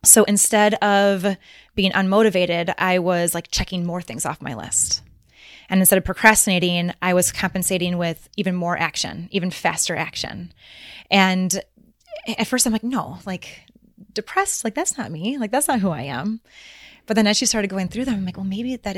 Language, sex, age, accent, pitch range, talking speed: English, female, 20-39, American, 175-210 Hz, 185 wpm